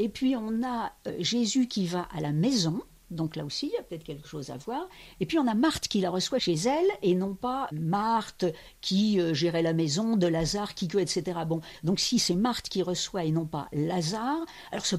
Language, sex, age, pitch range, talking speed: French, female, 50-69, 165-240 Hz, 230 wpm